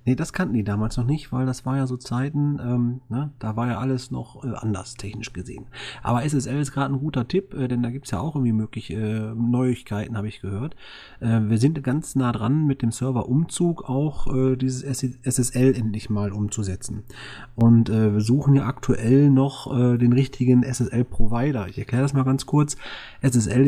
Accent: German